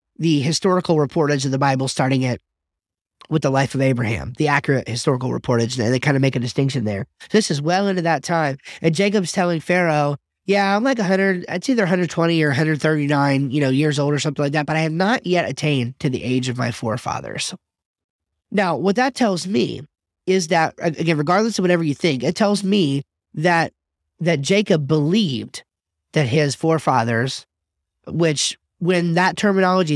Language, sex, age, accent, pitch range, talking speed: English, male, 30-49, American, 130-170 Hz, 185 wpm